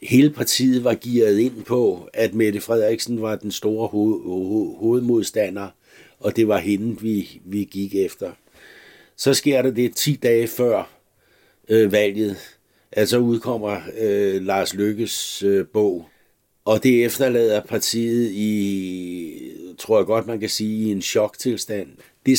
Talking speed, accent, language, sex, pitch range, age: 150 wpm, native, Danish, male, 105-120 Hz, 60-79